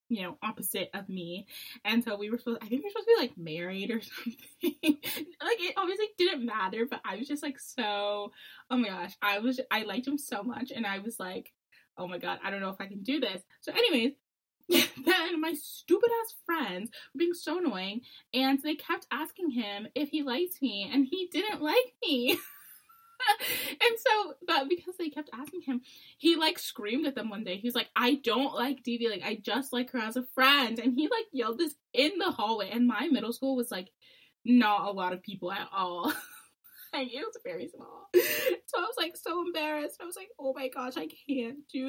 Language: English